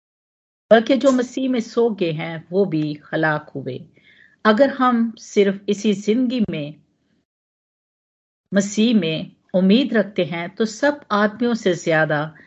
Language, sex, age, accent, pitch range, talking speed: Hindi, female, 50-69, native, 165-225 Hz, 130 wpm